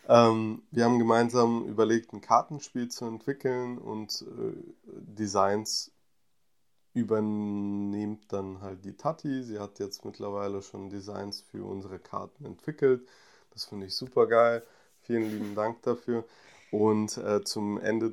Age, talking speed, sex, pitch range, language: 20-39, 130 wpm, male, 100-125 Hz, German